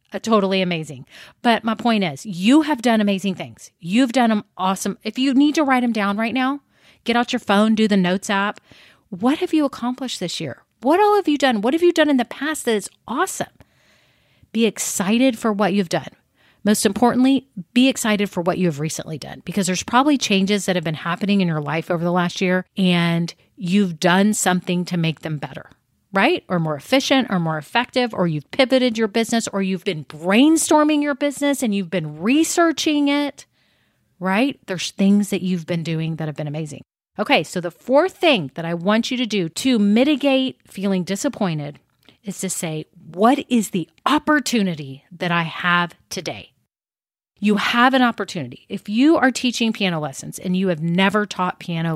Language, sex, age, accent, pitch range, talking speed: English, female, 40-59, American, 175-250 Hz, 195 wpm